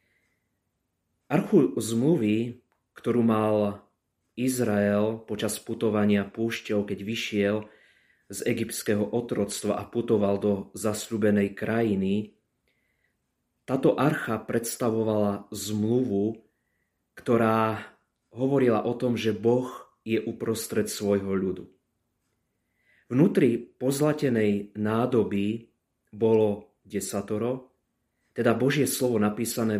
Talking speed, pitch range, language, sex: 85 wpm, 105-115 Hz, Slovak, male